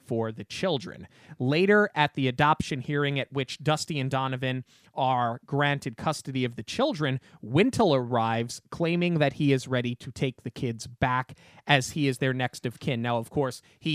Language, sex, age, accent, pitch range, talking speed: English, male, 30-49, American, 125-160 Hz, 180 wpm